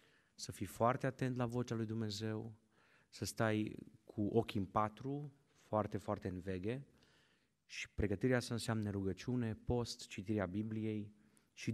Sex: male